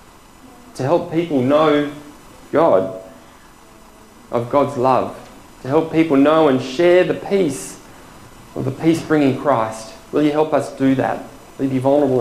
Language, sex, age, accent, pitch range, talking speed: English, male, 20-39, Australian, 120-155 Hz, 150 wpm